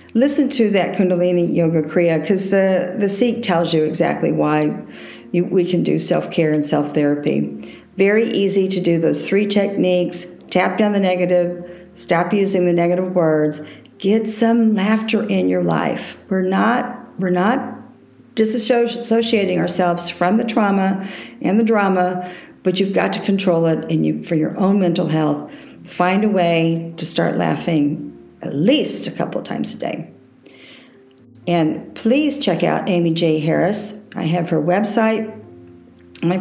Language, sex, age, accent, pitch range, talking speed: English, female, 50-69, American, 165-205 Hz, 155 wpm